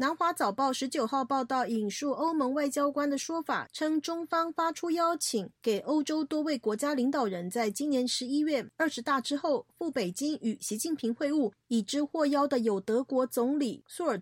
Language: Chinese